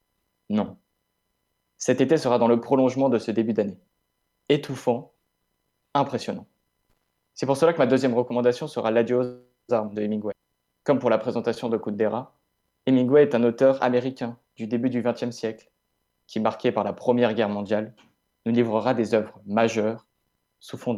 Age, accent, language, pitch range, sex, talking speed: 20-39, French, French, 105-125 Hz, male, 160 wpm